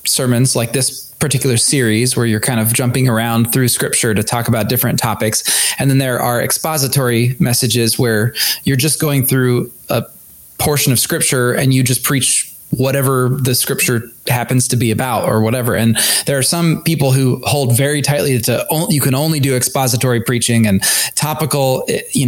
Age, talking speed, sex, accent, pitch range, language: 20-39, 175 wpm, male, American, 120-145 Hz, English